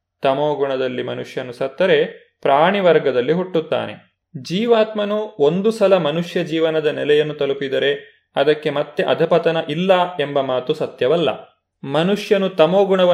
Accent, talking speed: native, 105 wpm